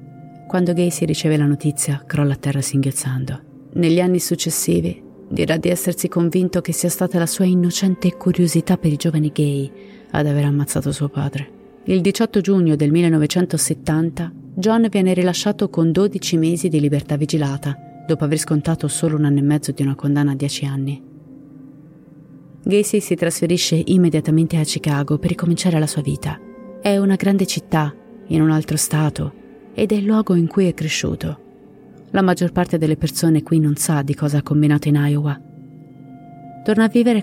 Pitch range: 145-175 Hz